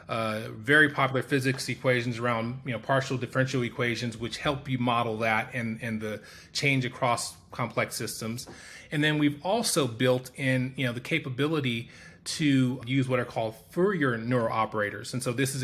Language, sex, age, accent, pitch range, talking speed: English, male, 30-49, American, 125-150 Hz, 175 wpm